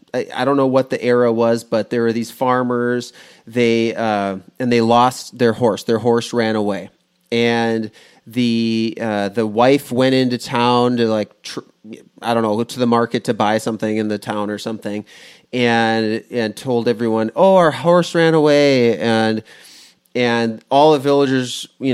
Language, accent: English, American